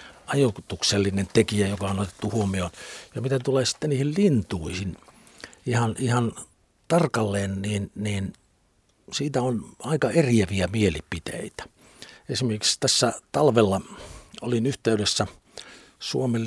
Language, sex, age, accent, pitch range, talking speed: Finnish, male, 60-79, native, 95-120 Hz, 100 wpm